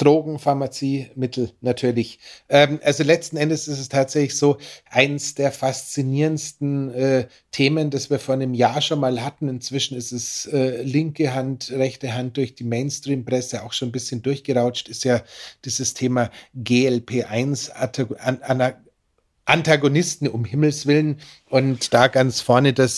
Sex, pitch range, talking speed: male, 125-140 Hz, 145 wpm